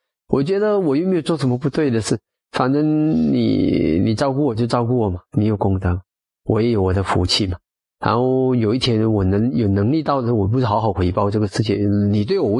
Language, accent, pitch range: Chinese, native, 100-135 Hz